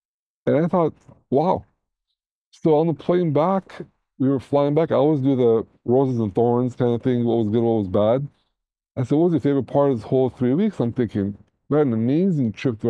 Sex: male